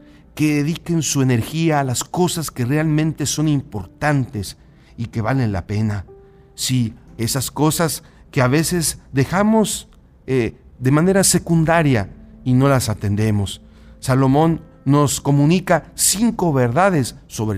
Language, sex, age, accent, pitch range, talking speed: Spanish, male, 50-69, Mexican, 105-140 Hz, 125 wpm